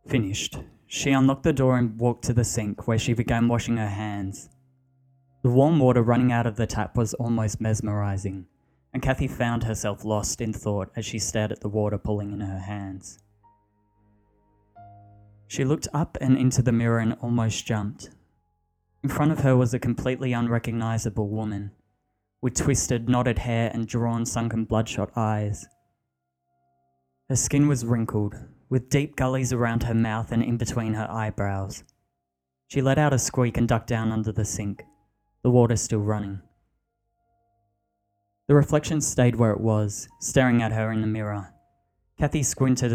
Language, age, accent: English, 20-39, Australian